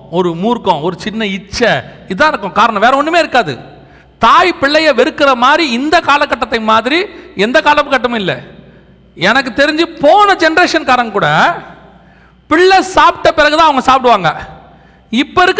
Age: 40-59